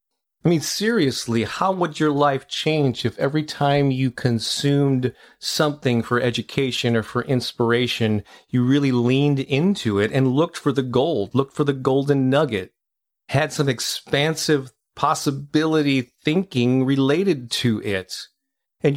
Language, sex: English, male